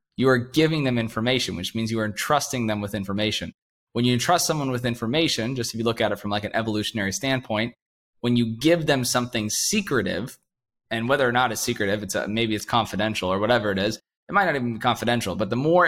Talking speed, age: 225 wpm, 20-39